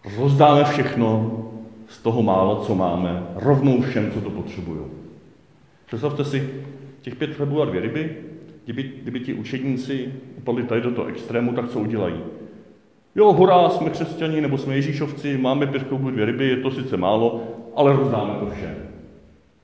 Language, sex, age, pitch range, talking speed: Czech, male, 40-59, 105-135 Hz, 155 wpm